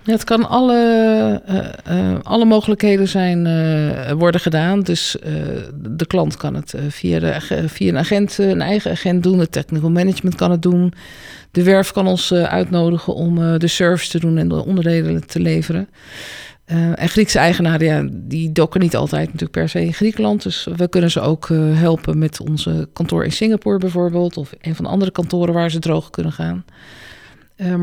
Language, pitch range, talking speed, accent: Dutch, 150-190 Hz, 190 wpm, Dutch